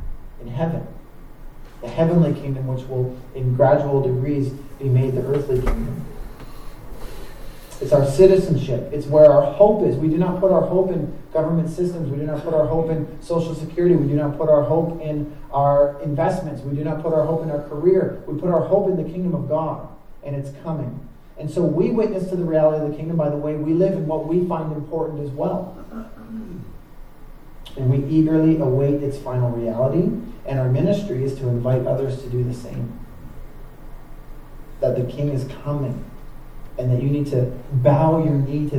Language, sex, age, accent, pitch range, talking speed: English, male, 30-49, American, 135-160 Hz, 195 wpm